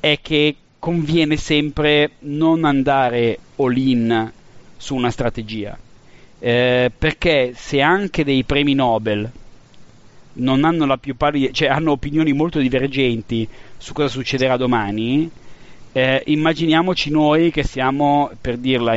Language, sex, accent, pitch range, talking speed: Italian, male, native, 120-140 Hz, 120 wpm